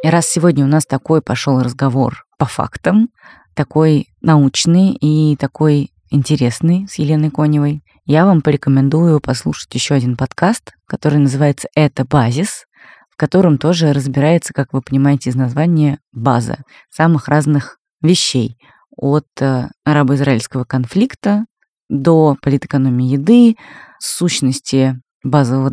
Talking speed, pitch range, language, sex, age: 115 wpm, 135-170 Hz, Russian, female, 20-39